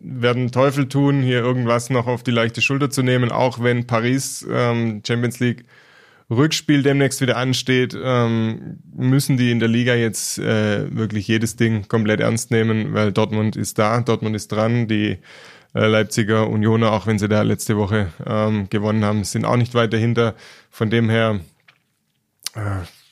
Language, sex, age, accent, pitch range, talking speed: German, male, 20-39, German, 110-130 Hz, 170 wpm